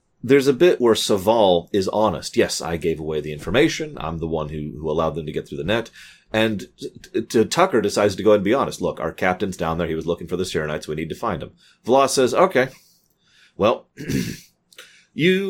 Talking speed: 225 wpm